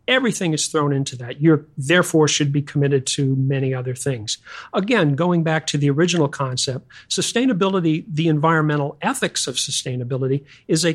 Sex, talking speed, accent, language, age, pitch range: male, 160 wpm, American, English, 50-69, 135-165 Hz